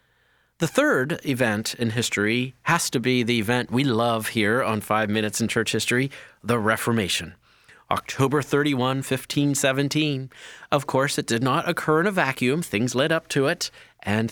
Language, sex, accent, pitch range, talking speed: English, male, American, 105-135 Hz, 165 wpm